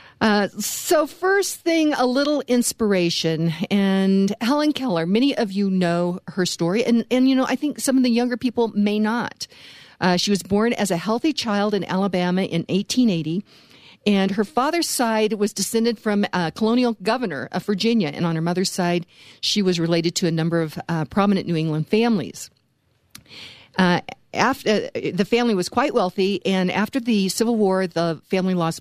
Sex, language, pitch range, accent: female, English, 165-215 Hz, American